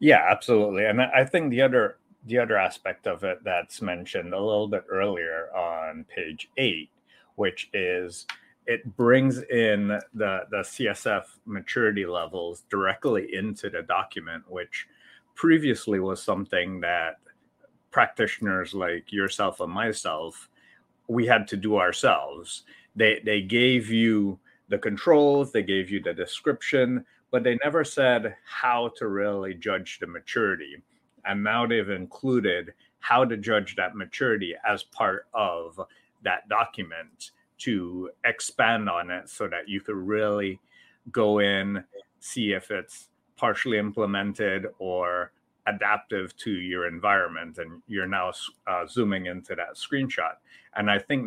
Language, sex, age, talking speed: English, male, 30-49, 135 wpm